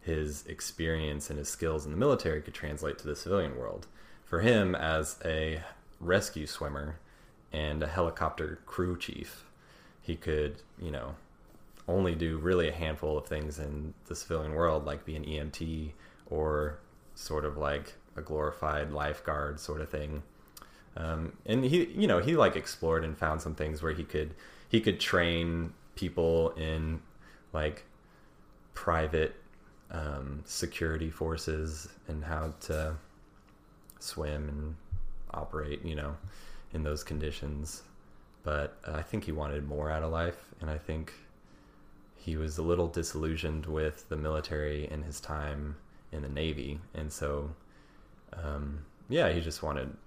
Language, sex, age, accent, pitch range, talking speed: English, male, 30-49, American, 75-85 Hz, 150 wpm